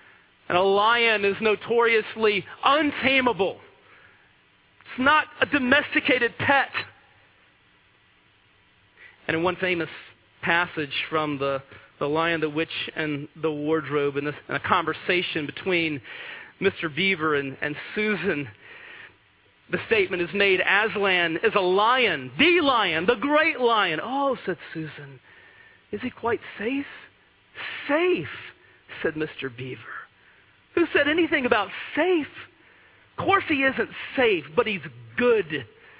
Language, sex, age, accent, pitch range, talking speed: English, male, 40-59, American, 155-265 Hz, 120 wpm